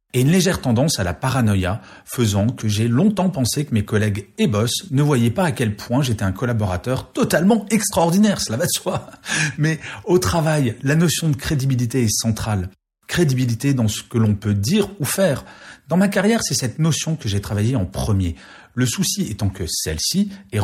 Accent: French